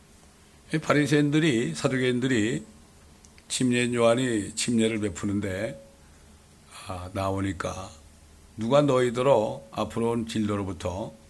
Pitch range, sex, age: 80-110 Hz, male, 60-79